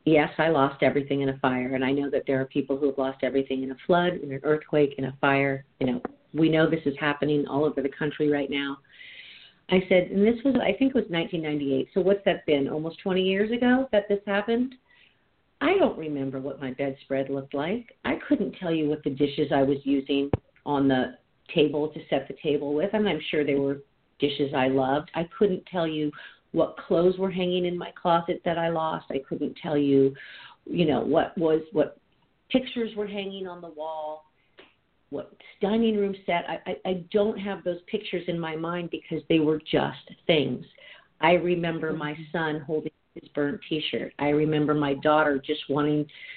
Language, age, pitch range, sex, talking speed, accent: English, 50-69, 145-185 Hz, female, 205 wpm, American